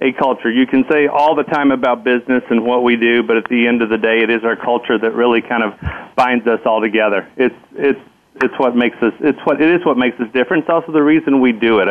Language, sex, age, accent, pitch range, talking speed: English, male, 40-59, American, 120-135 Hz, 270 wpm